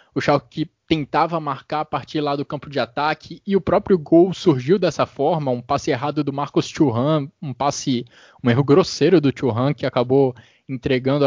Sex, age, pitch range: male, 20-39, 135-170 Hz